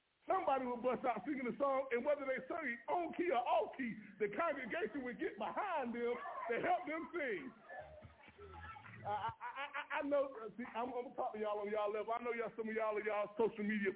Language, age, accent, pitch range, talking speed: English, 20-39, American, 235-350 Hz, 220 wpm